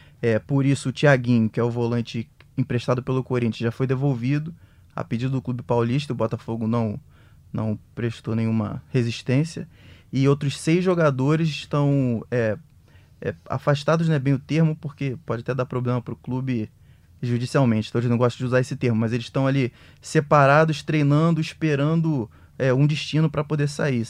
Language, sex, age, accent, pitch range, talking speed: Portuguese, male, 20-39, Brazilian, 115-145 Hz, 175 wpm